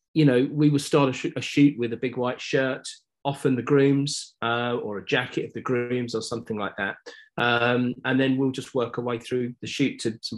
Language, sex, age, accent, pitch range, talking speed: English, male, 30-49, British, 105-130 Hz, 235 wpm